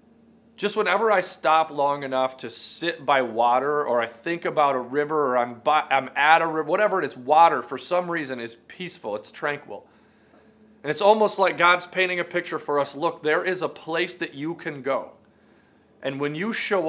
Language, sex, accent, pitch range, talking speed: English, male, American, 145-195 Hz, 205 wpm